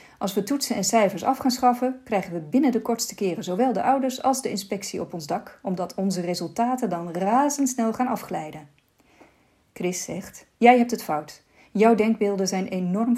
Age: 40-59